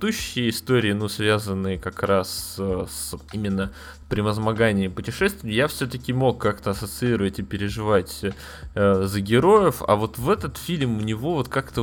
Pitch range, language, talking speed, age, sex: 95-120 Hz, Russian, 145 wpm, 20-39, male